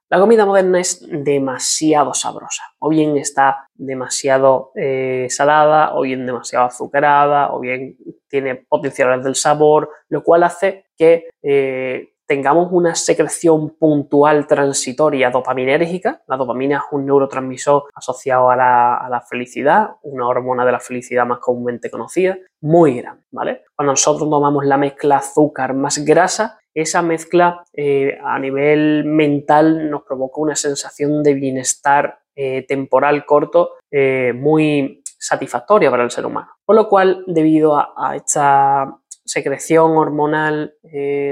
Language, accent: Spanish, Spanish